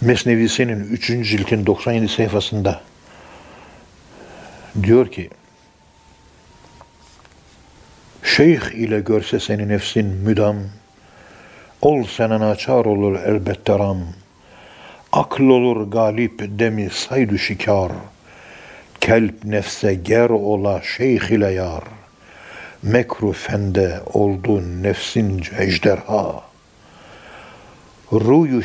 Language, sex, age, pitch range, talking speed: Turkish, male, 60-79, 100-115 Hz, 80 wpm